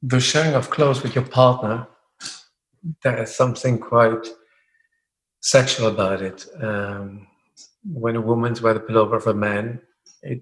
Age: 50-69